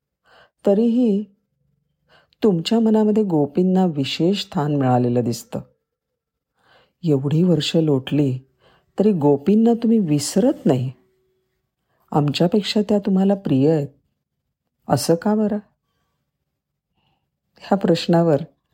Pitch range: 135-195 Hz